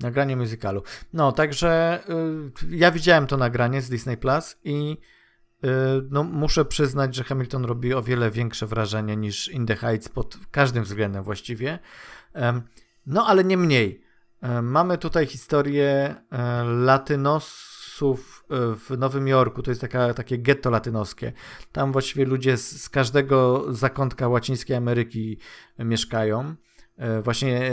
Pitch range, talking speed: 120-150 Hz, 120 wpm